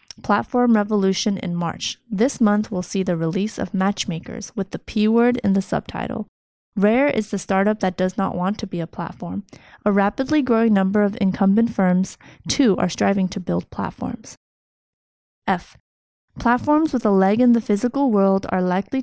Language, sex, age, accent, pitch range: Chinese, female, 20-39, American, 185-225 Hz